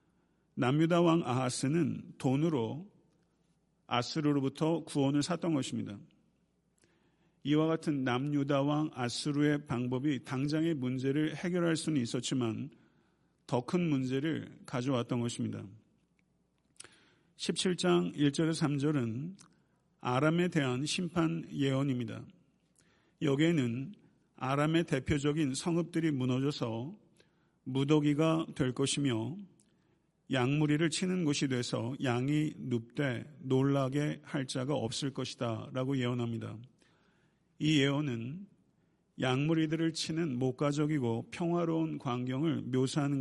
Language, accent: Korean, native